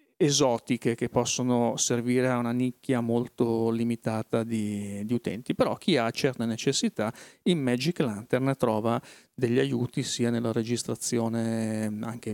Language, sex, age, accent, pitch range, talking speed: Italian, male, 40-59, native, 115-135 Hz, 130 wpm